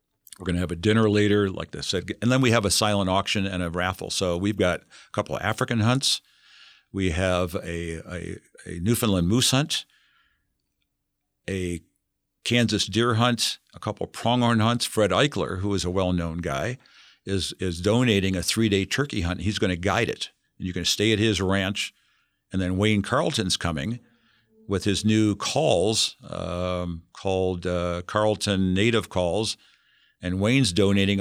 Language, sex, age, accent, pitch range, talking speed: English, male, 50-69, American, 90-110 Hz, 175 wpm